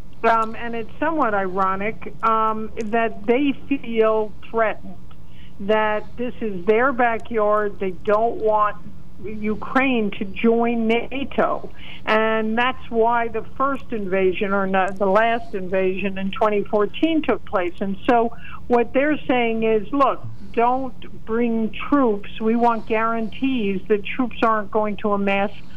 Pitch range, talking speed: 200-235 Hz, 130 wpm